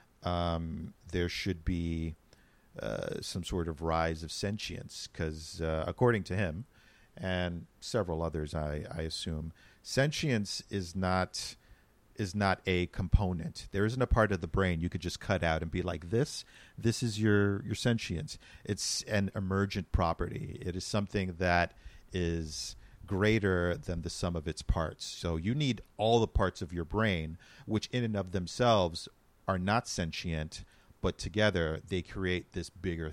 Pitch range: 85-105 Hz